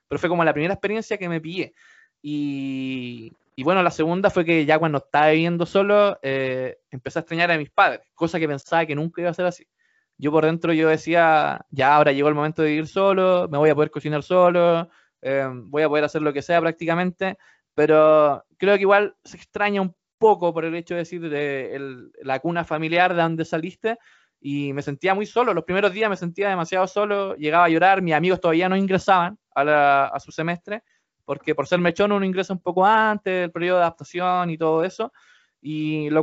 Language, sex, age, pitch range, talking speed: Spanish, male, 20-39, 150-185 Hz, 215 wpm